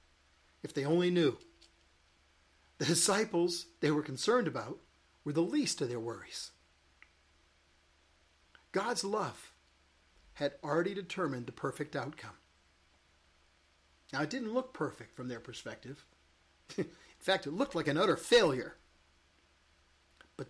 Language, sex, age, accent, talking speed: English, male, 50-69, American, 120 wpm